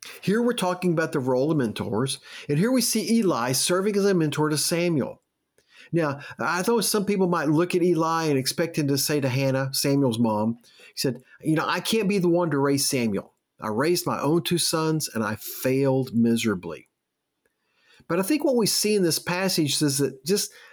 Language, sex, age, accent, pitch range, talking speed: English, male, 50-69, American, 135-190 Hz, 205 wpm